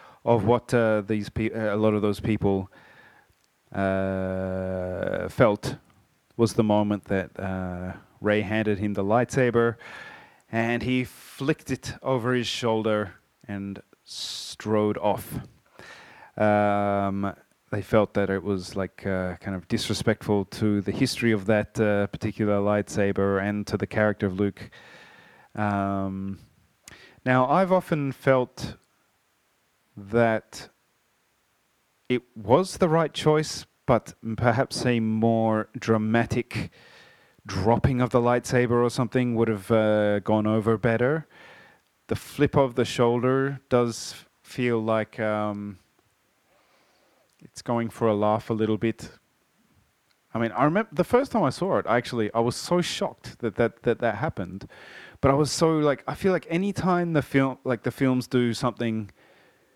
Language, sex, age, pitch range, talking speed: English, male, 30-49, 105-125 Hz, 140 wpm